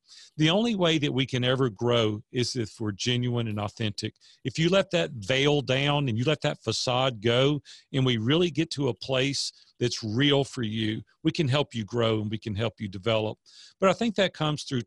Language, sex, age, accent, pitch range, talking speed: English, male, 40-59, American, 115-150 Hz, 220 wpm